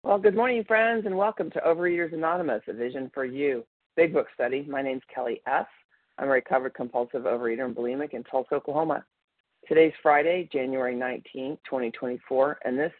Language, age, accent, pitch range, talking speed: English, 40-59, American, 130-160 Hz, 170 wpm